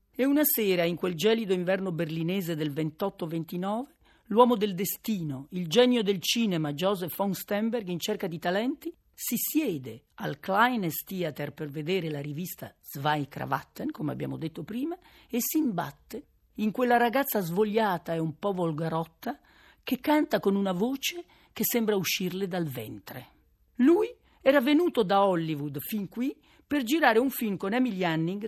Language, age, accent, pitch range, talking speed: Italian, 40-59, native, 170-240 Hz, 150 wpm